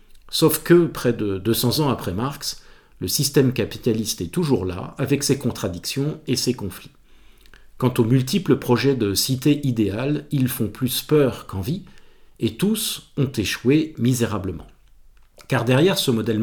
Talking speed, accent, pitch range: 150 wpm, French, 115-150 Hz